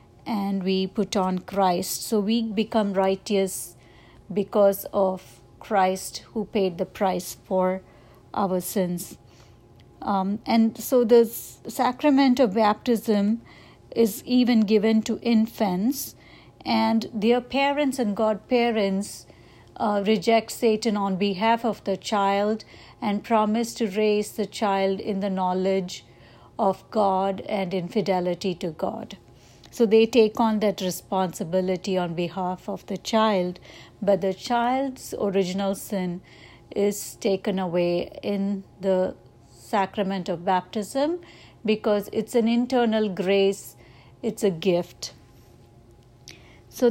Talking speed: 120 wpm